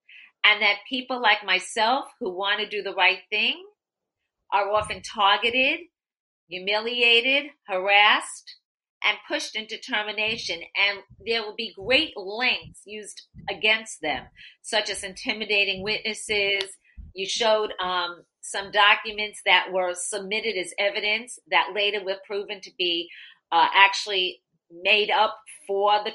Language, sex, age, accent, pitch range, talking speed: English, female, 40-59, American, 195-240 Hz, 130 wpm